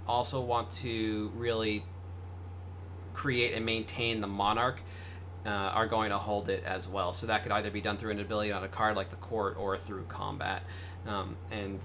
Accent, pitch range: American, 90-115 Hz